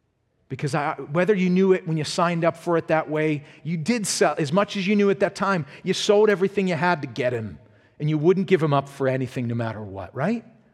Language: English